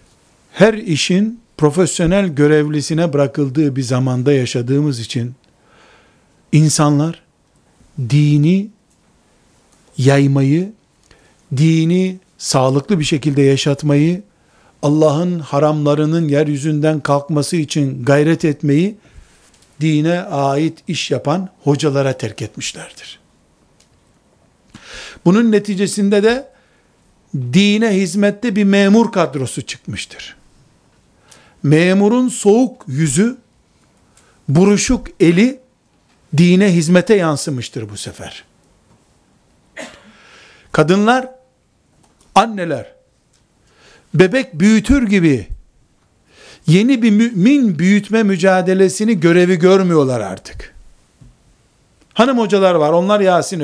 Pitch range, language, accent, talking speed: 145-200 Hz, Turkish, native, 75 wpm